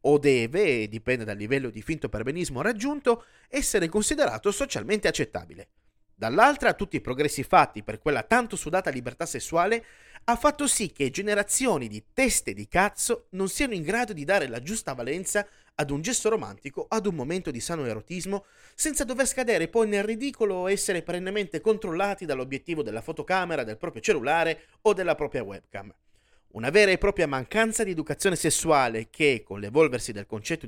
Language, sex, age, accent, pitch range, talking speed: Italian, male, 30-49, native, 135-215 Hz, 165 wpm